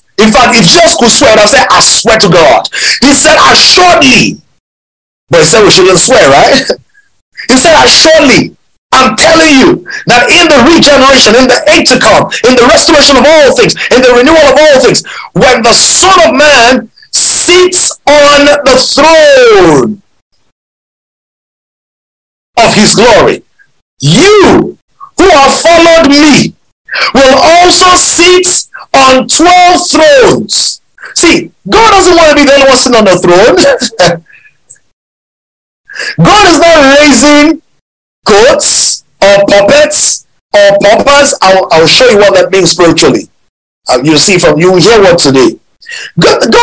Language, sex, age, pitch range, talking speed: English, male, 50-69, 240-340 Hz, 140 wpm